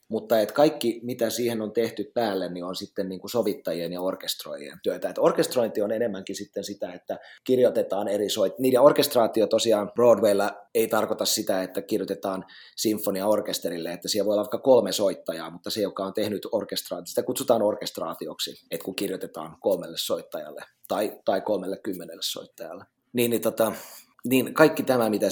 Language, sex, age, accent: Finnish, male, 30-49, native